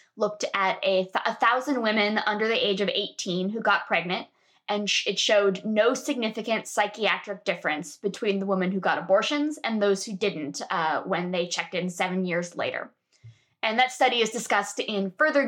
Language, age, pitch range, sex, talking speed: English, 20-39, 195-280 Hz, female, 180 wpm